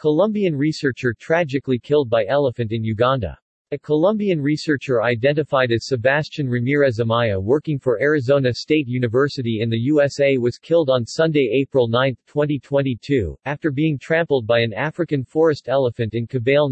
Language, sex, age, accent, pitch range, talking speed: English, male, 40-59, American, 120-150 Hz, 145 wpm